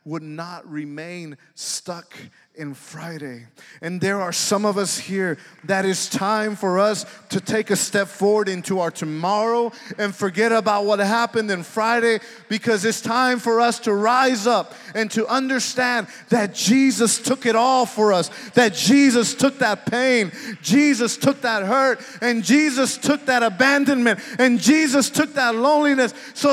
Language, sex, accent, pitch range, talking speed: English, male, American, 170-240 Hz, 160 wpm